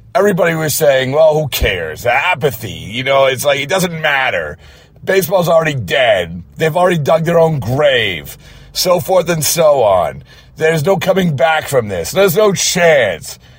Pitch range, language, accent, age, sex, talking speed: 120-155 Hz, English, American, 40-59, male, 165 wpm